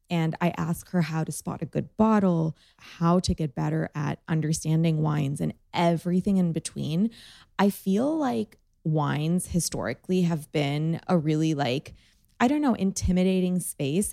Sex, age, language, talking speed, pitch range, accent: female, 20-39, English, 155 wpm, 150-180 Hz, American